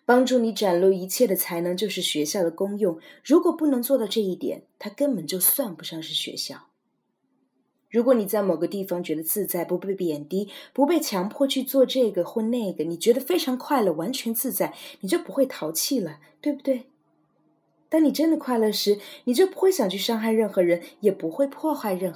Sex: female